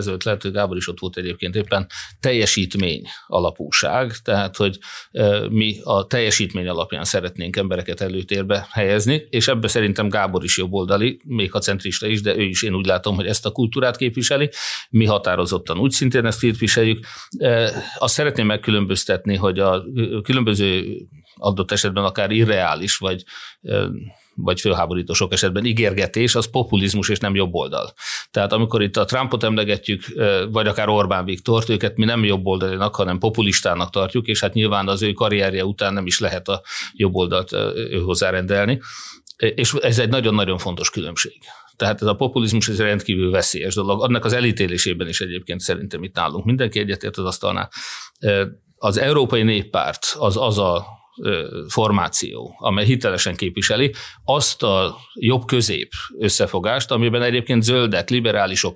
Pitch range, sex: 95-115 Hz, male